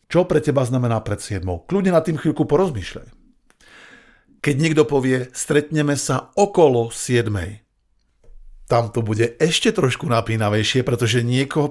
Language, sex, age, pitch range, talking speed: Slovak, male, 50-69, 110-150 Hz, 135 wpm